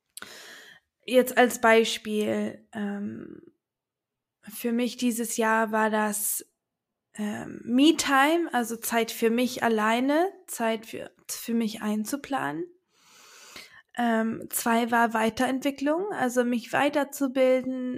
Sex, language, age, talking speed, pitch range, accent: female, German, 20-39, 95 wpm, 225-260 Hz, German